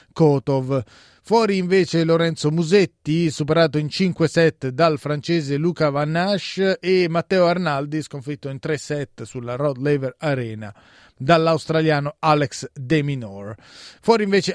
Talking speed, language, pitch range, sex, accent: 130 wpm, Italian, 135-165 Hz, male, native